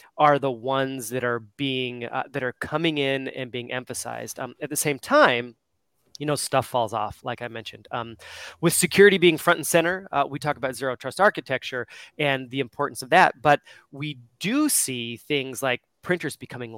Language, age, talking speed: English, 30-49, 195 wpm